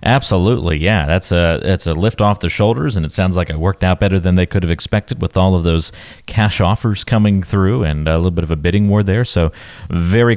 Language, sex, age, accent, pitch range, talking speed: English, male, 40-59, American, 85-105 Hz, 245 wpm